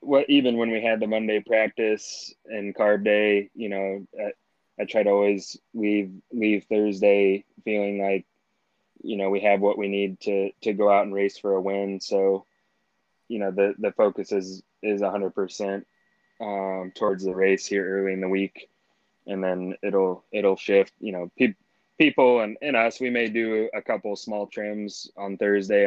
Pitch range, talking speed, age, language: 95-105 Hz, 185 wpm, 20-39, English